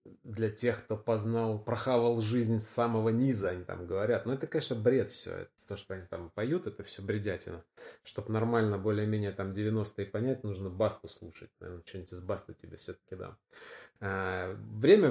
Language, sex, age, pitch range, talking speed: Russian, male, 20-39, 95-120 Hz, 170 wpm